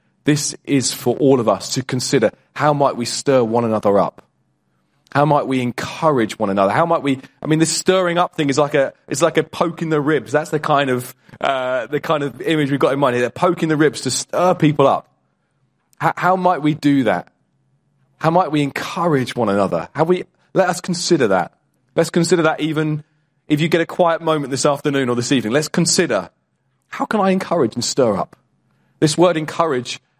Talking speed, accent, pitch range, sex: 210 wpm, British, 135-165 Hz, male